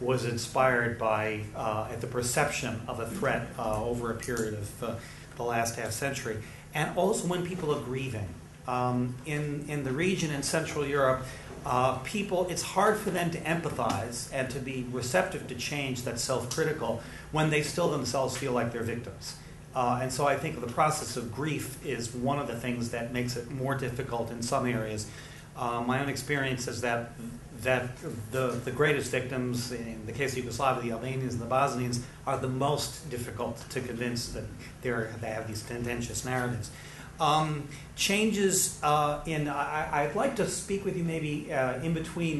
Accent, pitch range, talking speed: American, 120-150 Hz, 180 wpm